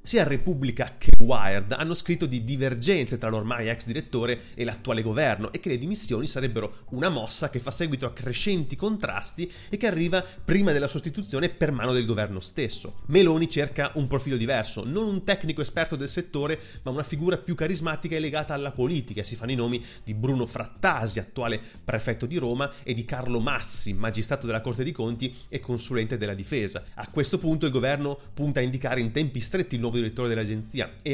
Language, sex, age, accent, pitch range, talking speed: Italian, male, 30-49, native, 115-155 Hz, 195 wpm